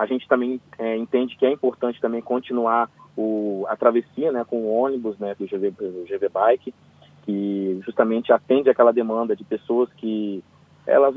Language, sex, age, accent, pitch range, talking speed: Portuguese, male, 20-39, Brazilian, 110-145 Hz, 170 wpm